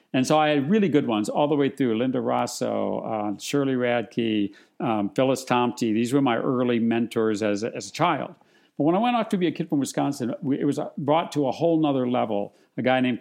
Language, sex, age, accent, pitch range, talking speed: English, male, 50-69, American, 120-150 Hz, 225 wpm